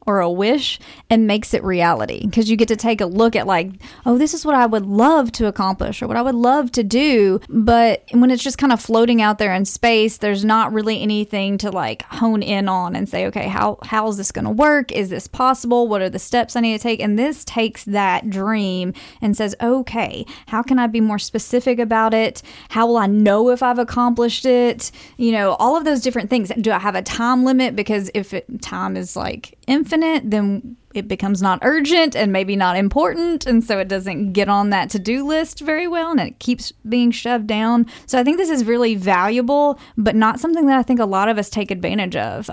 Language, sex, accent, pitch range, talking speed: English, female, American, 205-245 Hz, 230 wpm